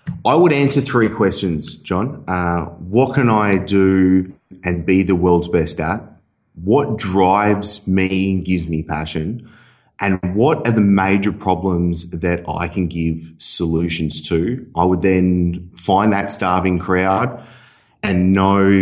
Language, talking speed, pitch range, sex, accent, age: English, 145 wpm, 85-105 Hz, male, Australian, 30-49